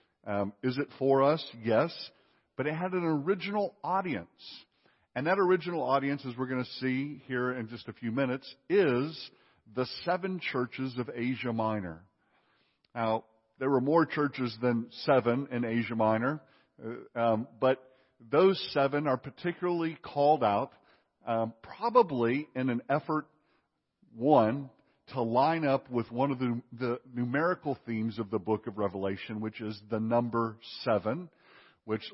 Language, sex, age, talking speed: English, male, 50-69, 150 wpm